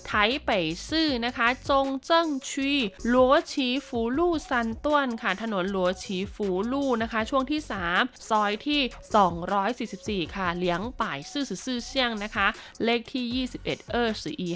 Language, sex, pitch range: Thai, female, 195-255 Hz